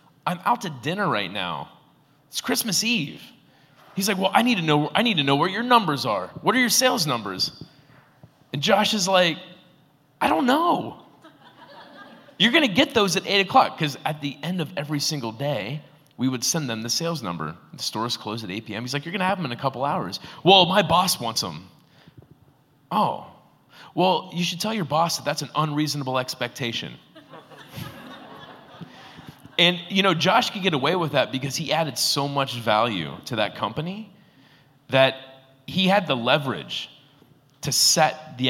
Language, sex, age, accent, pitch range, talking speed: English, male, 30-49, American, 125-175 Hz, 185 wpm